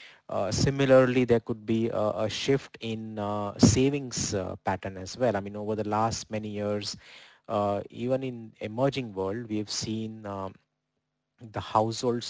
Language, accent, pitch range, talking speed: English, Indian, 100-120 Hz, 160 wpm